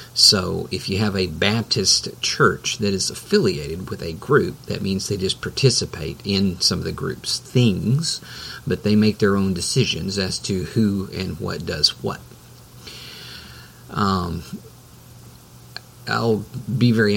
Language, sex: English, male